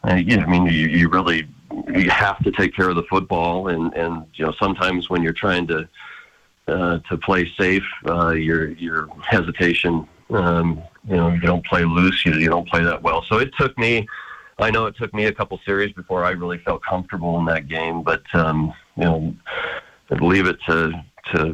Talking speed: 200 wpm